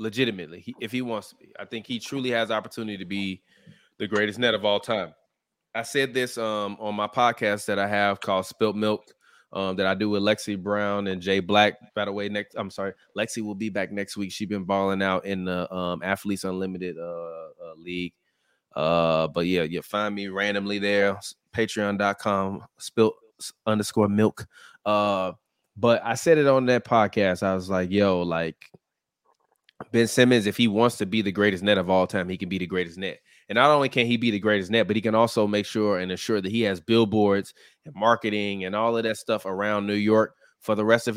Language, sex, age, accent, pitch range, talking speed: English, male, 20-39, American, 100-120 Hz, 215 wpm